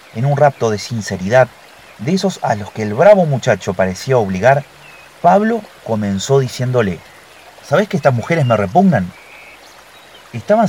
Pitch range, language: 100-155 Hz, Spanish